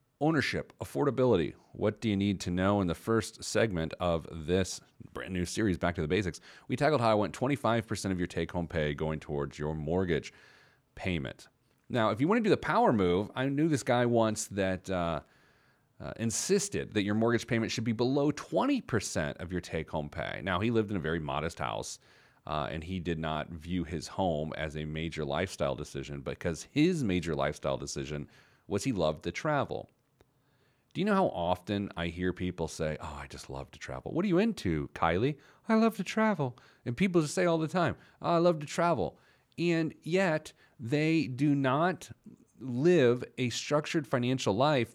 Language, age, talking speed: English, 40-59, 190 wpm